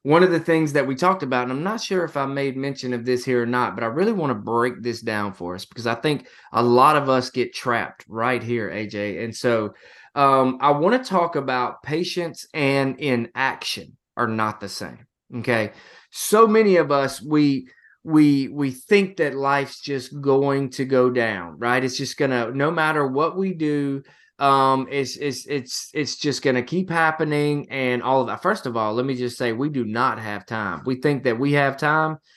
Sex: male